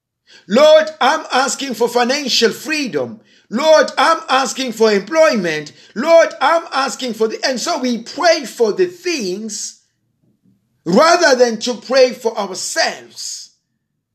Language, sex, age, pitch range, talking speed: English, male, 50-69, 230-310 Hz, 125 wpm